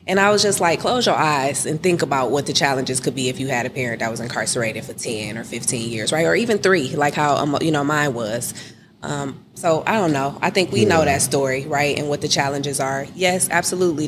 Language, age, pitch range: English, 20-39, 135-160 Hz